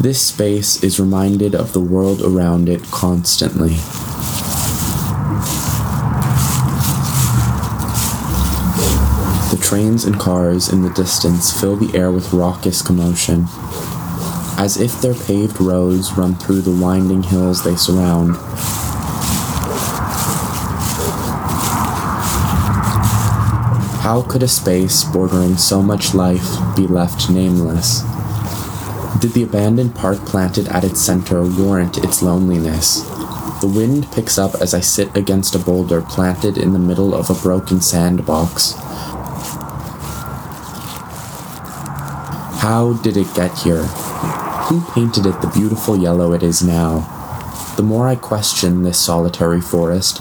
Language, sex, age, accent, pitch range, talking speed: English, male, 20-39, American, 90-105 Hz, 115 wpm